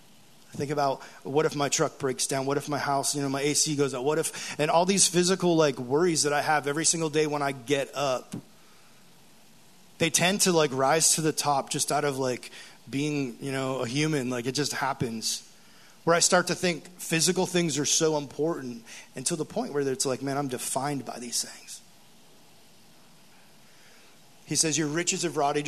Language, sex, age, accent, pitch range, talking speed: English, male, 30-49, American, 140-165 Hz, 200 wpm